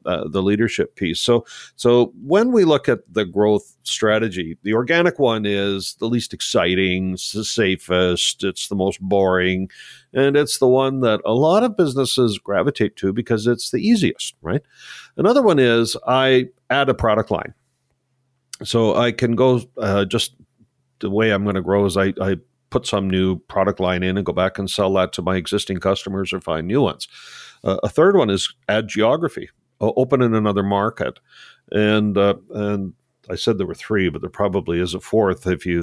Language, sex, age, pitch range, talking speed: English, male, 50-69, 95-120 Hz, 190 wpm